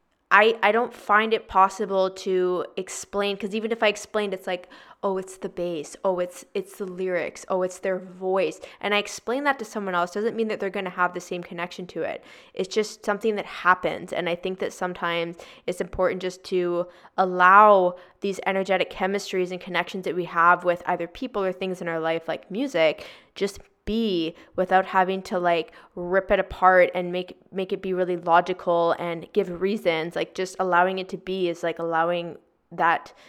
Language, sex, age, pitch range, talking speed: English, female, 20-39, 175-200 Hz, 195 wpm